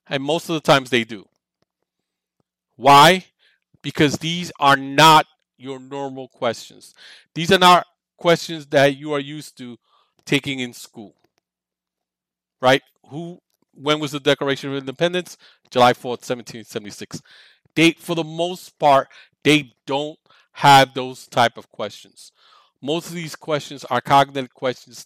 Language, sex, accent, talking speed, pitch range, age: English, male, American, 135 wpm, 125-155 Hz, 40-59